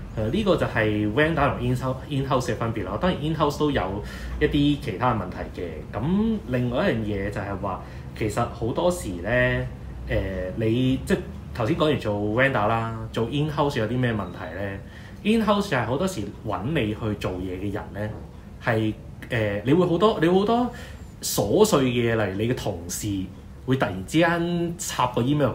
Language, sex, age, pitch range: Chinese, male, 20-39, 100-125 Hz